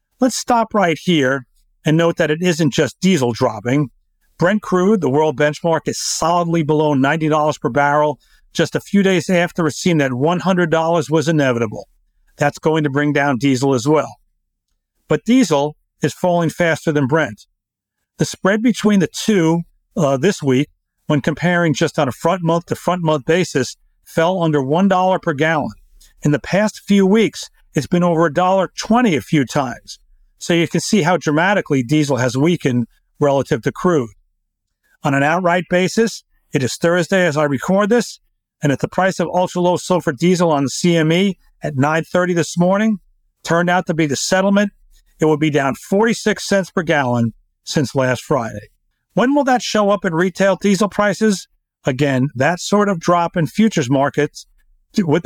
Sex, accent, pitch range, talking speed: male, American, 140-180 Hz, 170 wpm